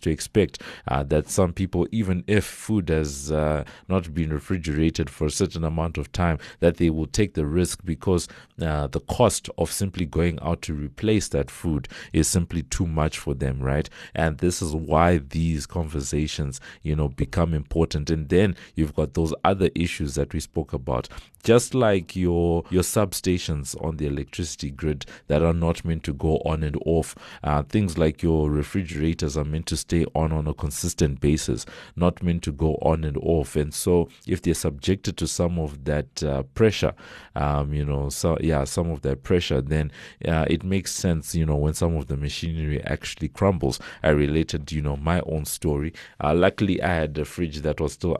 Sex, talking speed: male, 195 wpm